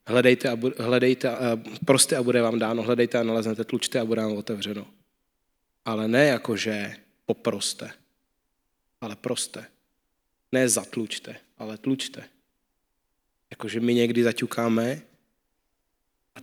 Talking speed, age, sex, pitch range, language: 110 wpm, 20-39, male, 110-125 Hz, Czech